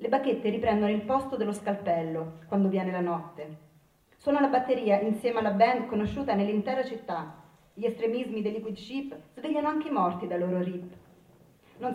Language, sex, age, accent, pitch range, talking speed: Italian, female, 30-49, native, 180-245 Hz, 165 wpm